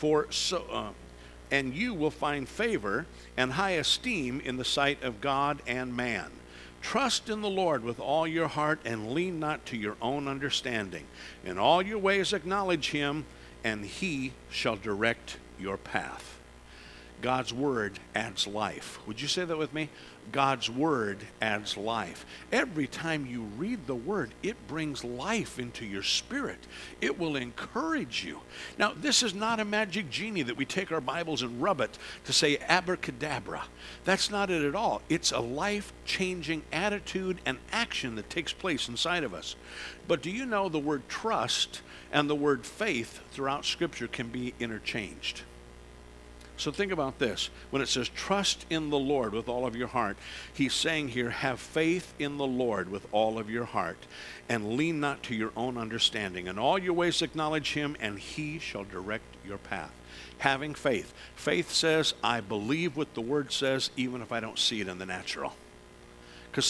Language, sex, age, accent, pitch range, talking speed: English, male, 50-69, American, 100-155 Hz, 175 wpm